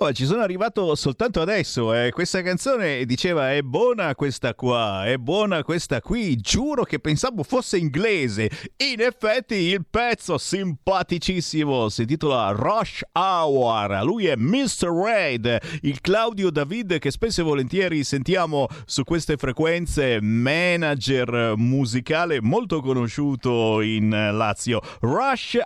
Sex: male